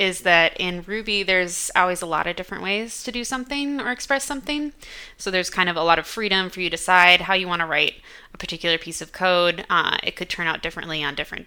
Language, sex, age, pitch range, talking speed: English, female, 20-39, 165-205 Hz, 245 wpm